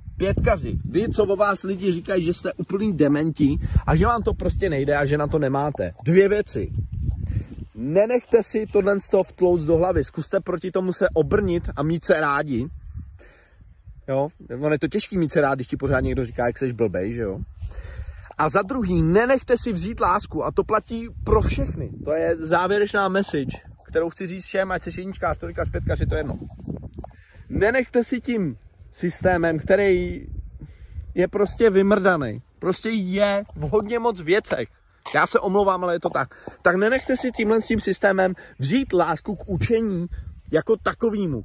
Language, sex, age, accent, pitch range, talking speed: Czech, male, 30-49, native, 140-200 Hz, 170 wpm